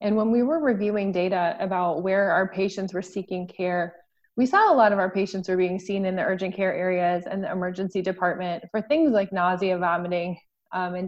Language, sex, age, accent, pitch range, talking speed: English, female, 20-39, American, 190-235 Hz, 210 wpm